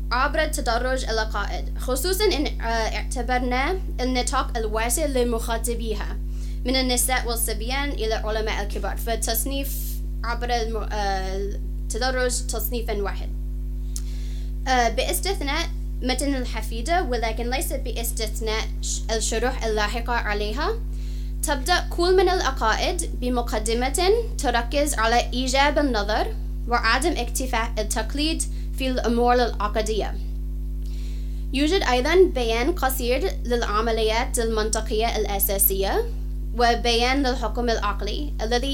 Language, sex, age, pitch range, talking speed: English, female, 20-39, 215-265 Hz, 85 wpm